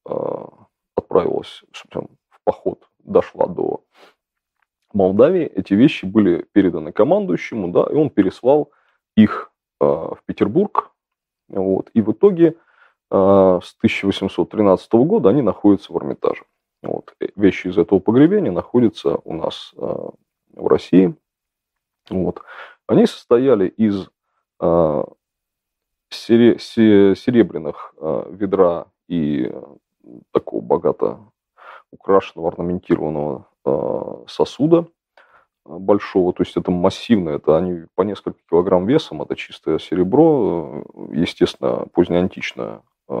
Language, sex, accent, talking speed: Russian, male, native, 95 wpm